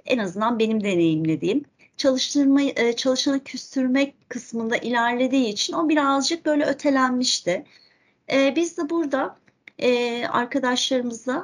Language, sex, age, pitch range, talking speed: Turkish, female, 40-59, 220-280 Hz, 90 wpm